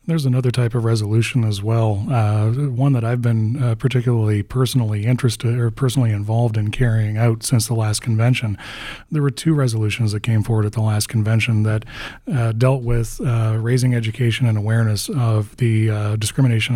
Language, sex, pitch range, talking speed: English, male, 110-125 Hz, 180 wpm